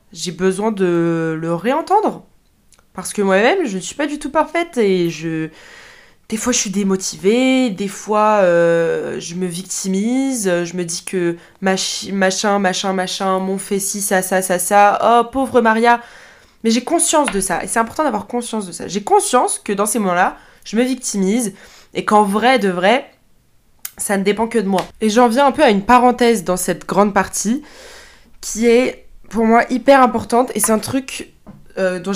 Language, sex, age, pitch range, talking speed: French, female, 20-39, 190-240 Hz, 185 wpm